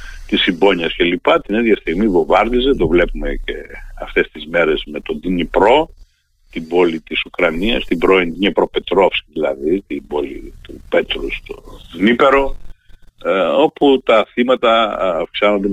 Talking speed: 130 wpm